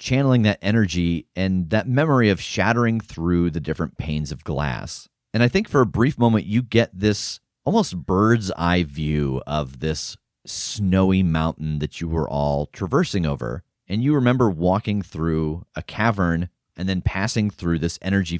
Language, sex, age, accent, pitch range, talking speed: English, male, 30-49, American, 80-110 Hz, 165 wpm